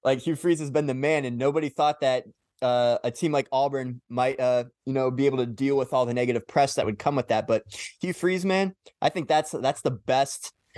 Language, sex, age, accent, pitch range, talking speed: English, male, 20-39, American, 115-140 Hz, 245 wpm